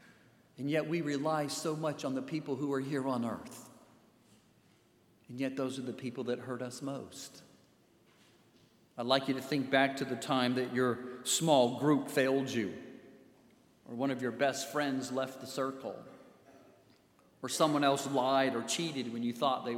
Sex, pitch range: male, 120-135 Hz